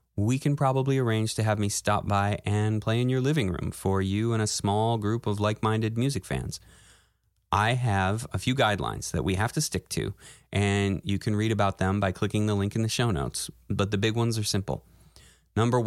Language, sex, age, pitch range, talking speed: English, male, 20-39, 95-115 Hz, 215 wpm